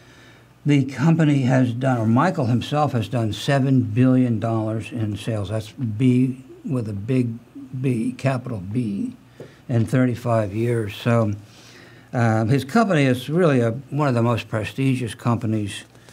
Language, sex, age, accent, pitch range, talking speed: English, male, 60-79, American, 115-135 Hz, 140 wpm